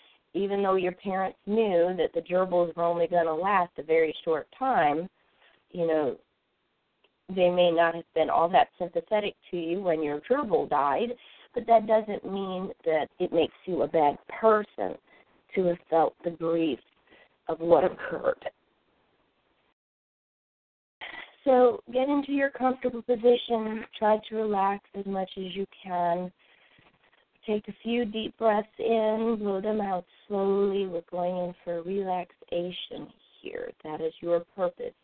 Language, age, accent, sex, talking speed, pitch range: English, 40-59, American, female, 145 wpm, 170-220 Hz